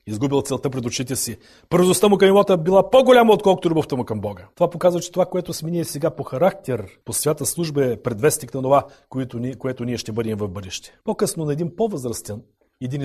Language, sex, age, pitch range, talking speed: Bulgarian, male, 40-59, 125-190 Hz, 200 wpm